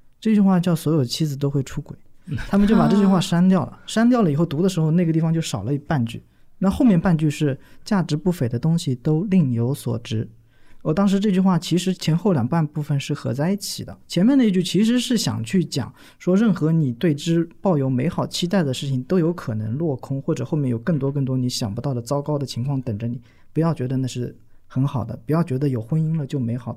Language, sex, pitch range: Chinese, male, 125-175 Hz